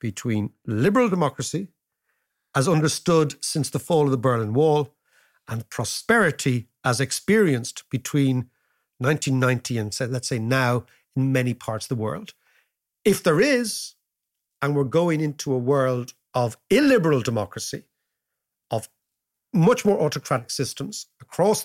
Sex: male